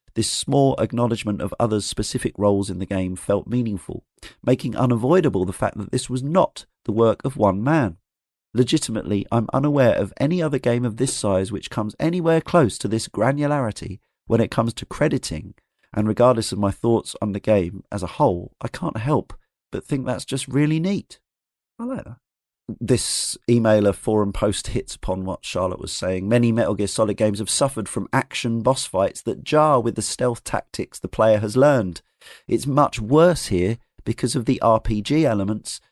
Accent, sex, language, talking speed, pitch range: British, male, English, 185 wpm, 105-130 Hz